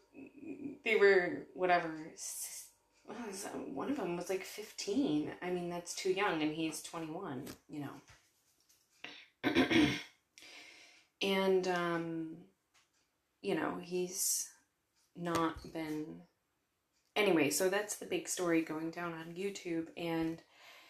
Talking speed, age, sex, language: 105 wpm, 20-39, female, English